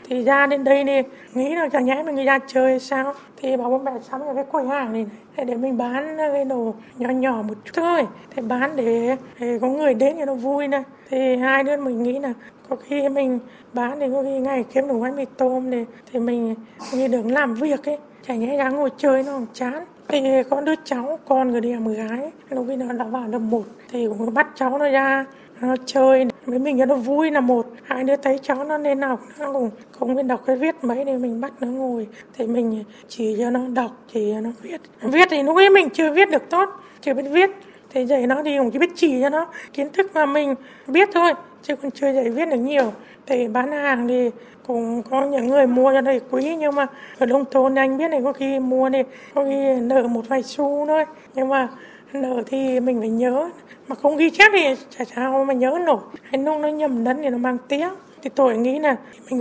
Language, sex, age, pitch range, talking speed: Vietnamese, female, 20-39, 250-285 Hz, 240 wpm